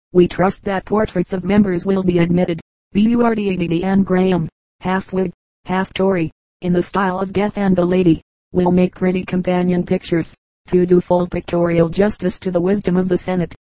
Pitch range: 175-190 Hz